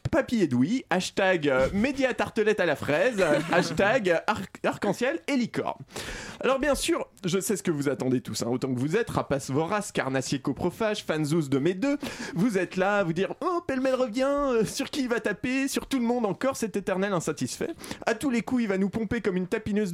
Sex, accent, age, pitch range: male, French, 20-39, 140-220 Hz